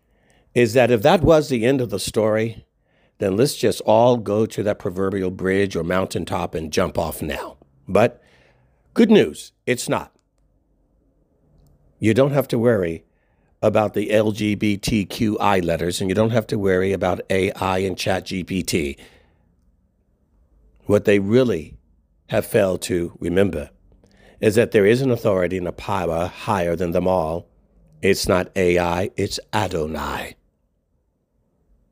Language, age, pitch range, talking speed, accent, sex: English, 60-79, 85-105 Hz, 140 wpm, American, male